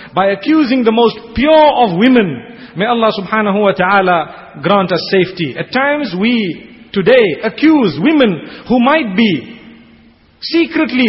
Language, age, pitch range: English, 40-59, 195-260 Hz